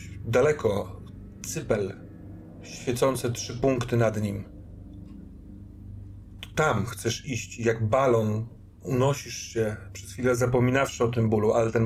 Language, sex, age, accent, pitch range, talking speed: Polish, male, 40-59, native, 100-120 Hz, 115 wpm